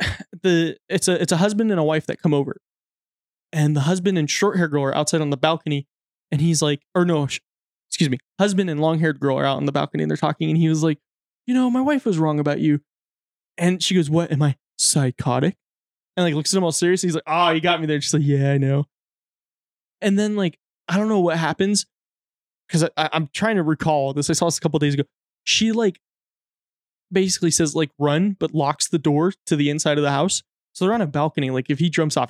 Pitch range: 150-185 Hz